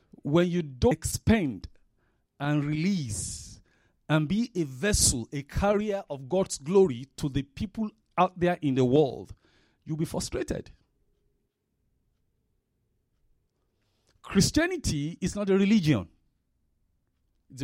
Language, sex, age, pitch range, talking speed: English, male, 50-69, 130-200 Hz, 110 wpm